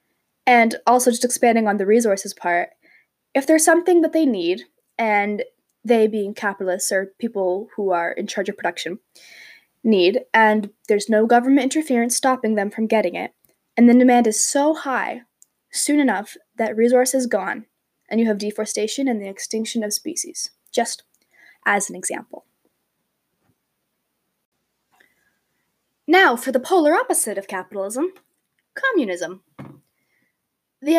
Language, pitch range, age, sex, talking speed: English, 210-270 Hz, 10-29, female, 140 wpm